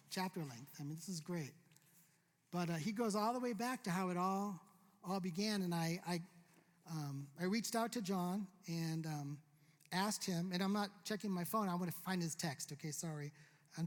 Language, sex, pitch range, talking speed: English, male, 165-210 Hz, 210 wpm